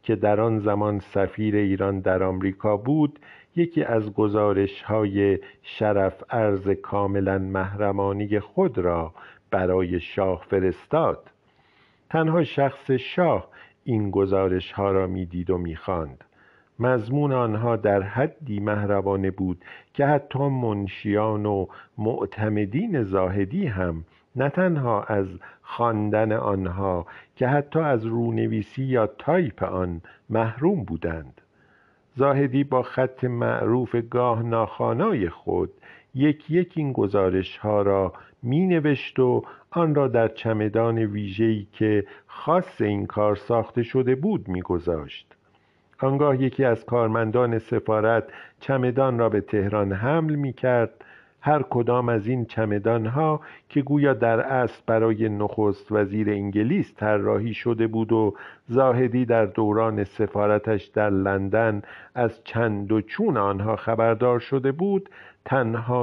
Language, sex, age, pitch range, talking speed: Persian, male, 50-69, 100-125 Hz, 120 wpm